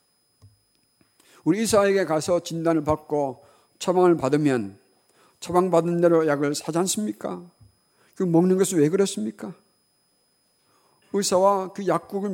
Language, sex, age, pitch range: Korean, male, 50-69, 150-210 Hz